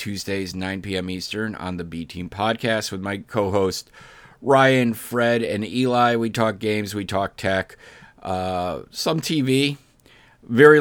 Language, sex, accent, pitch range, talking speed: English, male, American, 95-120 Hz, 140 wpm